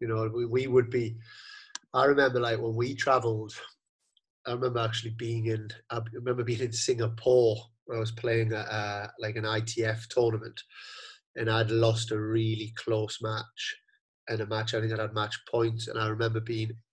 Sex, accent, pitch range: male, British, 115-130 Hz